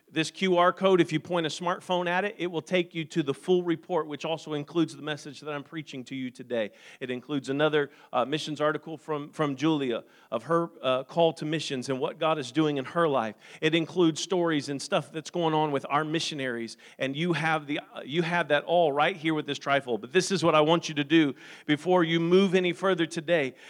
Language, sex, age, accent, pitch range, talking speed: English, male, 40-59, American, 150-185 Hz, 235 wpm